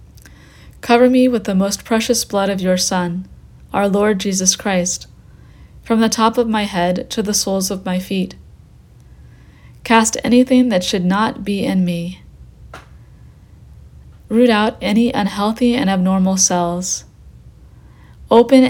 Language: English